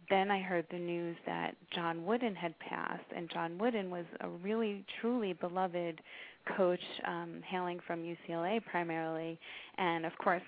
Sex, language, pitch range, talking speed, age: female, English, 165-185 Hz, 155 wpm, 30-49